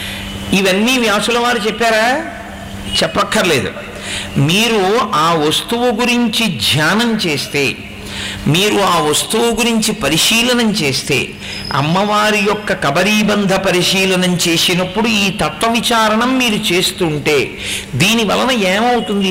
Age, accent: 50-69, native